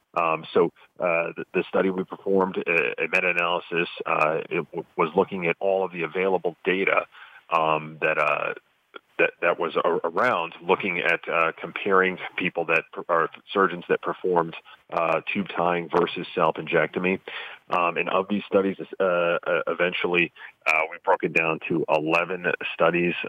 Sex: male